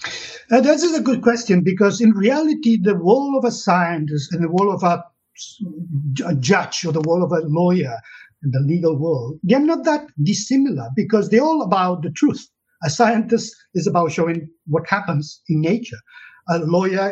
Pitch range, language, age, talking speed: 155-215 Hz, English, 50-69, 180 wpm